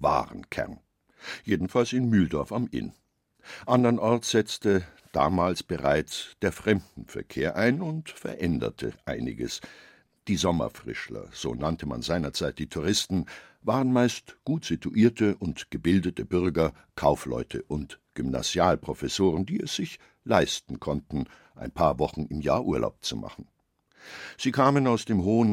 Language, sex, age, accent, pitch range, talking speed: German, male, 60-79, German, 75-110 Hz, 120 wpm